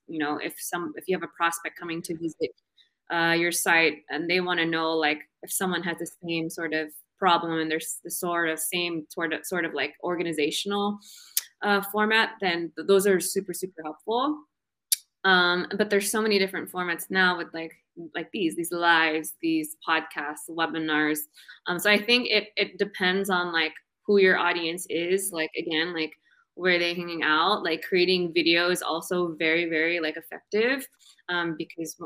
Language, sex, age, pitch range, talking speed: Finnish, female, 20-39, 160-185 Hz, 180 wpm